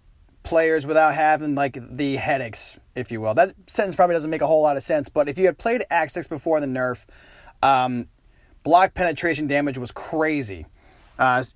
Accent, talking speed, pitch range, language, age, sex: American, 180 wpm, 135-180 Hz, English, 30-49, male